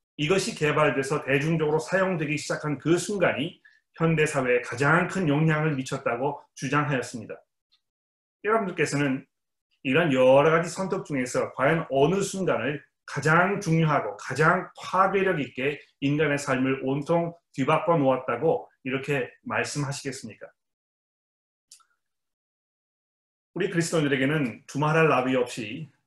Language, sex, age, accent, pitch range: Korean, male, 30-49, native, 135-170 Hz